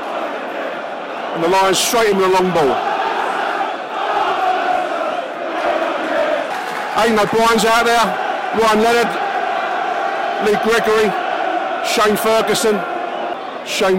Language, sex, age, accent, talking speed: English, male, 50-69, British, 90 wpm